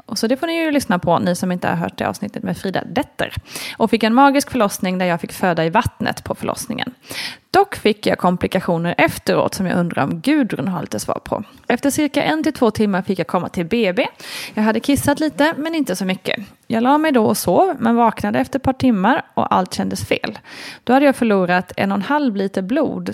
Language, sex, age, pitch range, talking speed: Swedish, female, 30-49, 190-265 Hz, 235 wpm